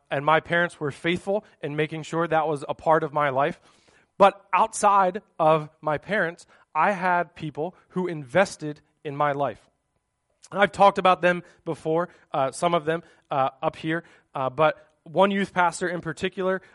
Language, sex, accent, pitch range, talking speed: English, male, American, 150-175 Hz, 170 wpm